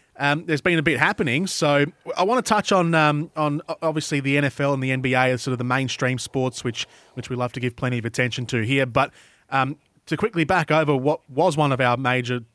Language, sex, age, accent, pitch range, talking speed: English, male, 30-49, Australian, 125-160 Hz, 235 wpm